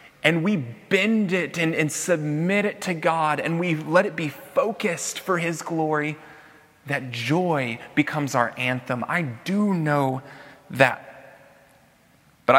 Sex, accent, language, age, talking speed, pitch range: male, American, English, 30-49, 140 wpm, 120-155 Hz